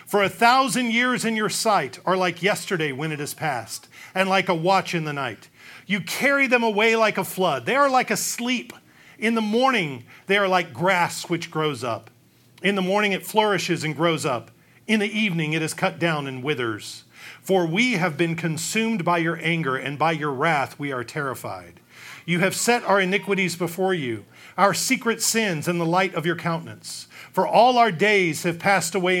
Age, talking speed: 40-59, 200 wpm